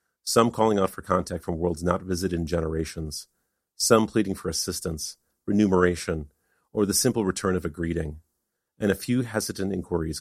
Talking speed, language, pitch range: 165 wpm, English, 80-105 Hz